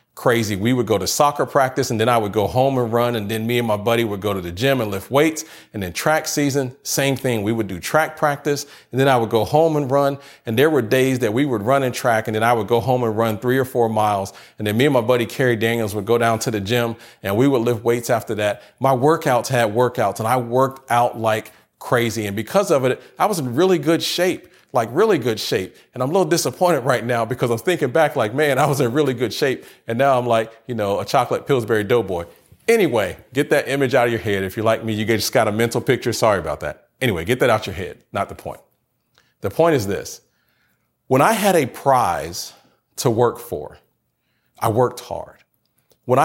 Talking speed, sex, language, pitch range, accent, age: 250 wpm, male, English, 110-135 Hz, American, 40-59